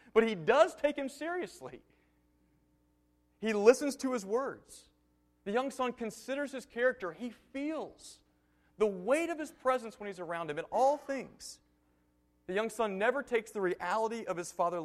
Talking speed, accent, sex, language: 165 wpm, American, male, English